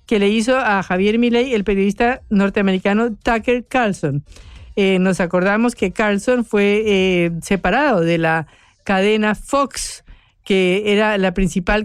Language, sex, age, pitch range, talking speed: Spanish, female, 50-69, 190-245 Hz, 135 wpm